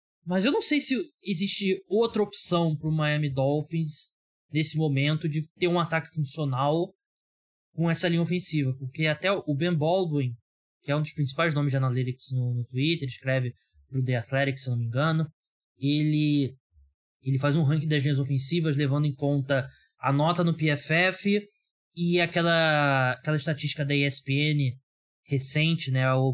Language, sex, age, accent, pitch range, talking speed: Portuguese, male, 20-39, Brazilian, 130-165 Hz, 160 wpm